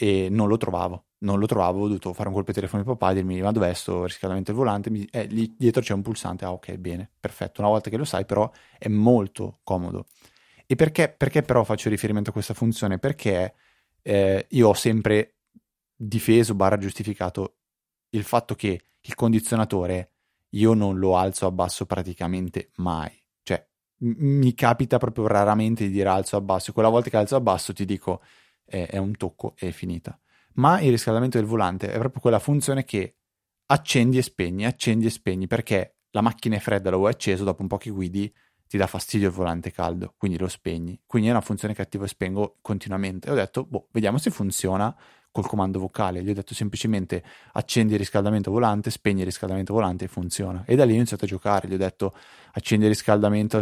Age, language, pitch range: 20-39, Italian, 95-115 Hz